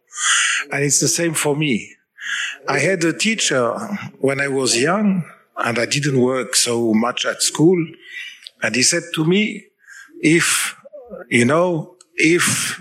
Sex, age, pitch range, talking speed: male, 50-69, 130-190 Hz, 145 wpm